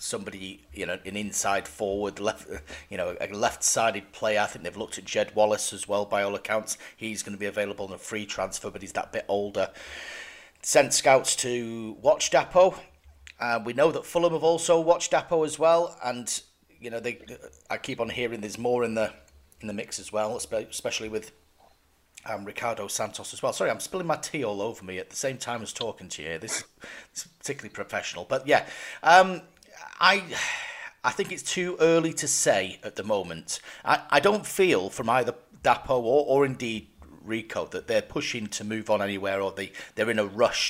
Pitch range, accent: 105-135 Hz, British